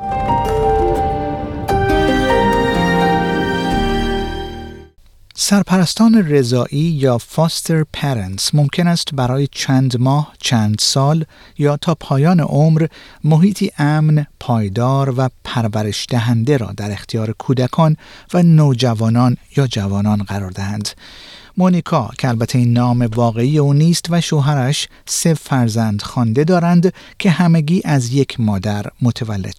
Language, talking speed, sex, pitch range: Persian, 105 wpm, male, 115-160 Hz